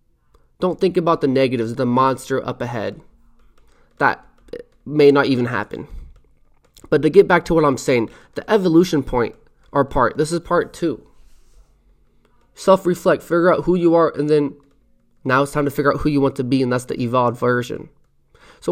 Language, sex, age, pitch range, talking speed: English, male, 20-39, 125-165 Hz, 180 wpm